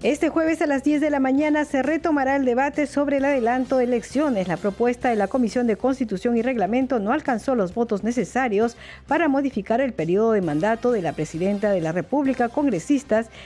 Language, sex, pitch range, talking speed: Spanish, female, 215-270 Hz, 195 wpm